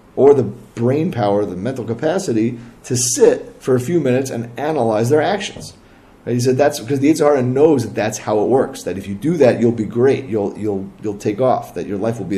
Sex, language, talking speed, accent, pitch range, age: male, English, 235 wpm, American, 110-145 Hz, 30-49